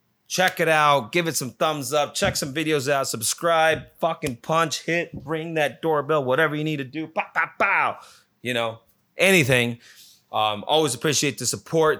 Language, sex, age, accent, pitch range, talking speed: English, male, 30-49, American, 120-160 Hz, 175 wpm